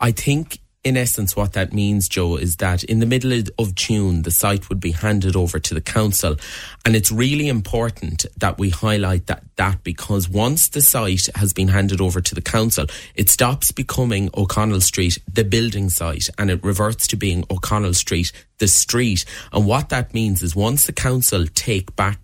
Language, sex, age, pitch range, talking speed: English, male, 30-49, 95-115 Hz, 190 wpm